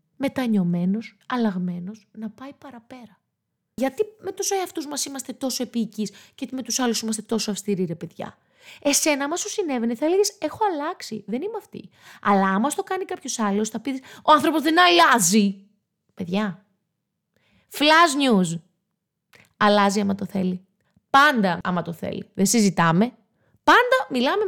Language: Greek